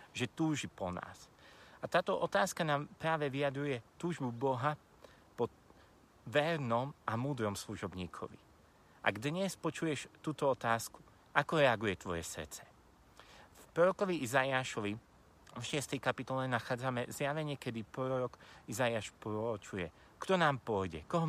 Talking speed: 120 wpm